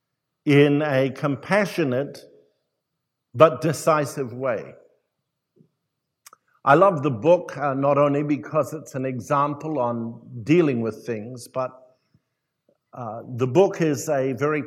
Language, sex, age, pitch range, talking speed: English, male, 60-79, 135-165 Hz, 115 wpm